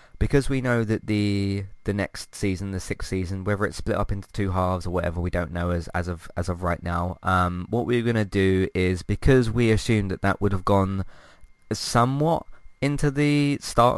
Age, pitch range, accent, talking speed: 20-39, 90-110 Hz, British, 205 wpm